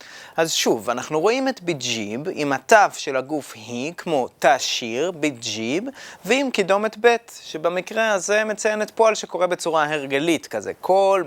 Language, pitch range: Hebrew, 145-215 Hz